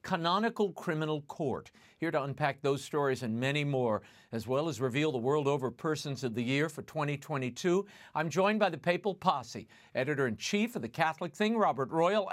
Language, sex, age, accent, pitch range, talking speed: English, male, 50-69, American, 130-180 Hz, 180 wpm